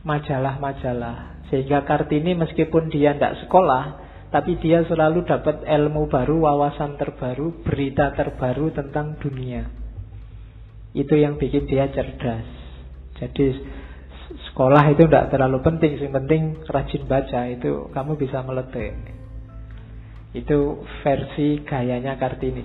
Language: Indonesian